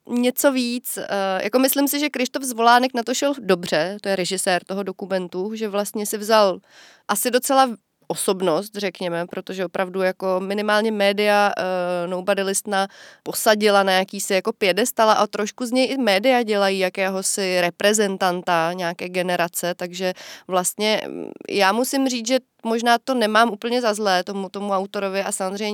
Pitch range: 195-230 Hz